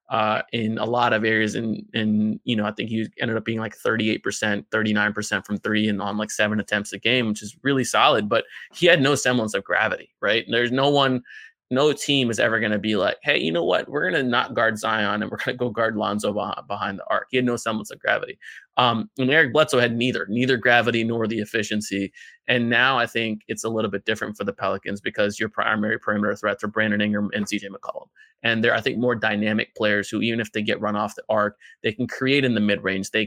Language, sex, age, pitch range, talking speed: English, male, 20-39, 105-120 Hz, 255 wpm